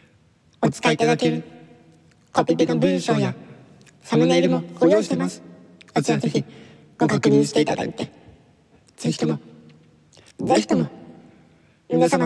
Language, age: Japanese, 60-79